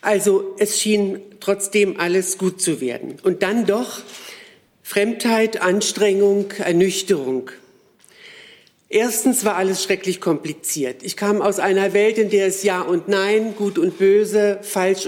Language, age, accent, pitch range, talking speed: German, 50-69, German, 185-210 Hz, 135 wpm